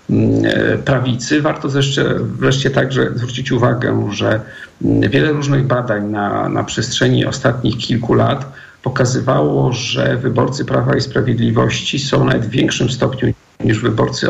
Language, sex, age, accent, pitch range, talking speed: Polish, male, 50-69, native, 105-135 Hz, 120 wpm